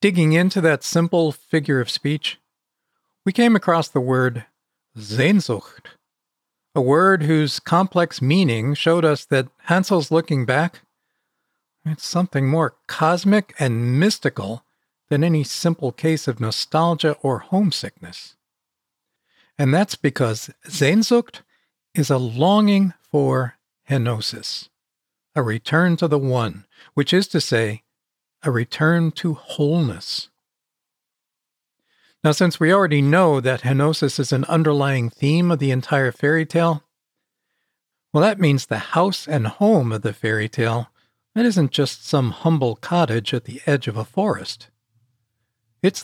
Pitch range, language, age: 130-170 Hz, English, 50-69